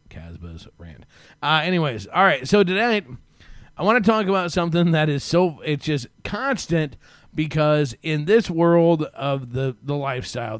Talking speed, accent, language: 160 wpm, American, English